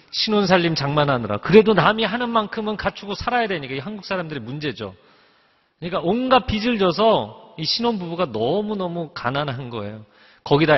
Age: 40-59